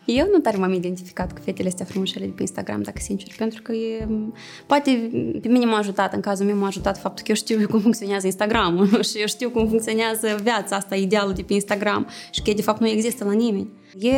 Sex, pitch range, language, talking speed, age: female, 190-225 Hz, Romanian, 230 wpm, 20-39